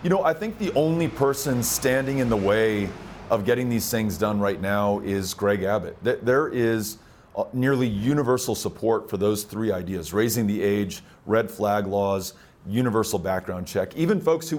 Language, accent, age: English, American, 40-59